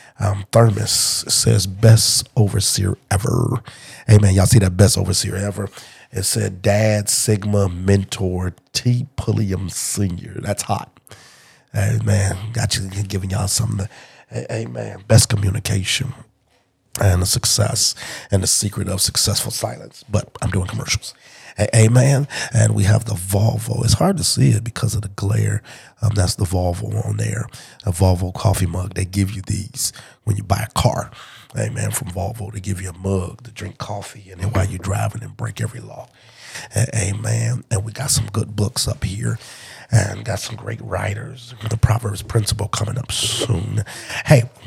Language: English